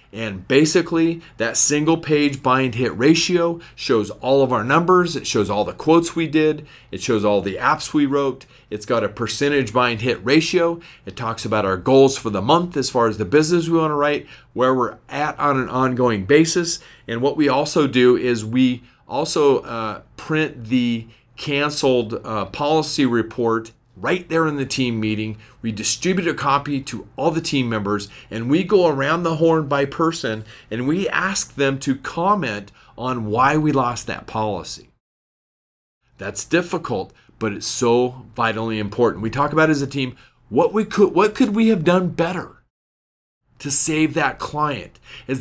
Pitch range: 115-155 Hz